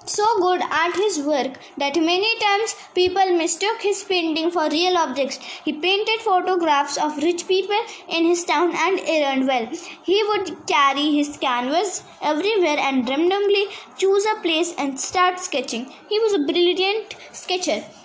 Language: English